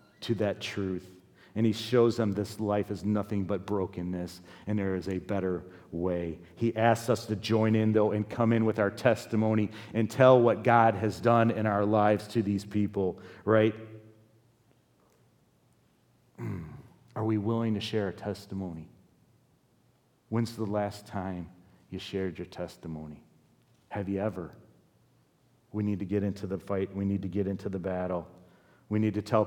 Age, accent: 40-59, American